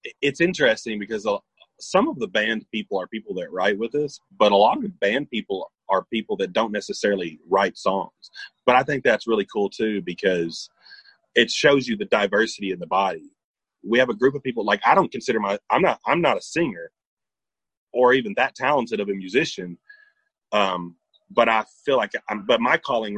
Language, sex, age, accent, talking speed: English, male, 30-49, American, 195 wpm